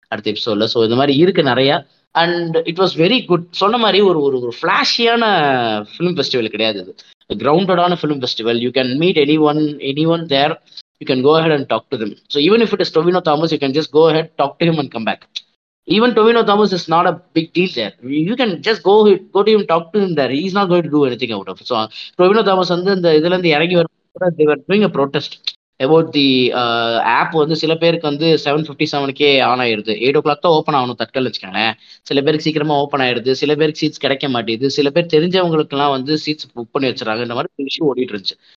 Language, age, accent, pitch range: Tamil, 20-39, native, 130-180 Hz